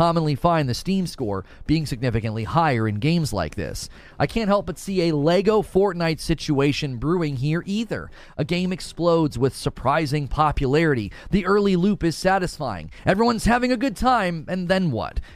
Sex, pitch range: male, 130-180 Hz